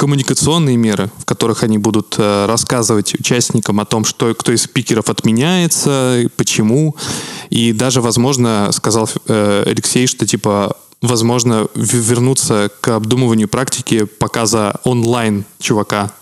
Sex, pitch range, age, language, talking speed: male, 110-130 Hz, 20-39, Russian, 120 wpm